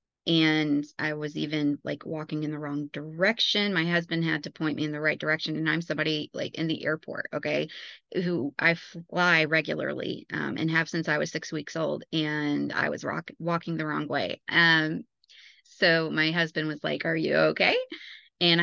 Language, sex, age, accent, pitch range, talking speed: English, female, 20-39, American, 155-175 Hz, 190 wpm